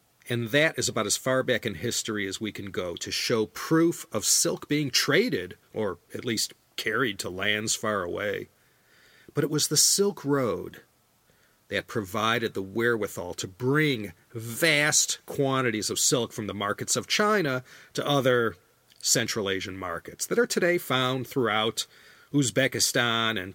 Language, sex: English, male